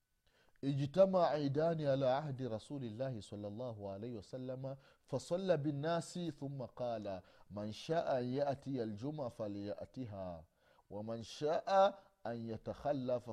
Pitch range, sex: 105-145 Hz, male